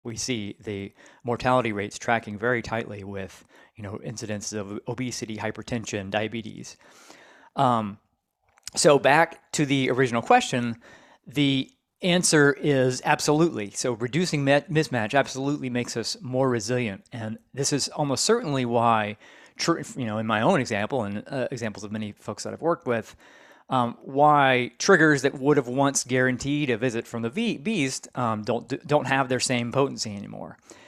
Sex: male